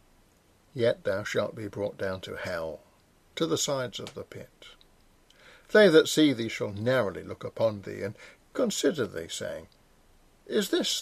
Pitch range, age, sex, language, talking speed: 115-160 Hz, 60-79, male, English, 160 wpm